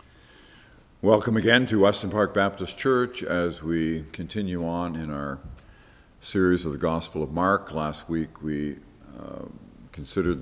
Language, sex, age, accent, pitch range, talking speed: English, male, 50-69, American, 75-95 Hz, 140 wpm